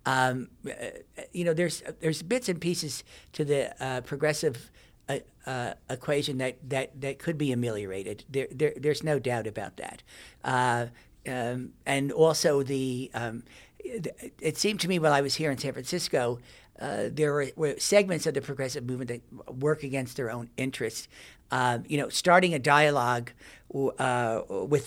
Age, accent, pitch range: 60-79, American, 125-150 Hz